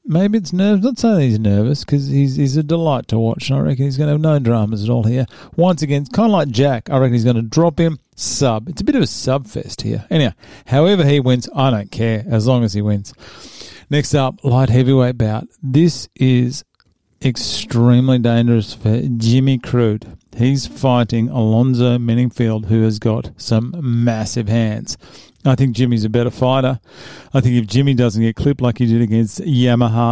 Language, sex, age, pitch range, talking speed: English, male, 40-59, 115-140 Hz, 200 wpm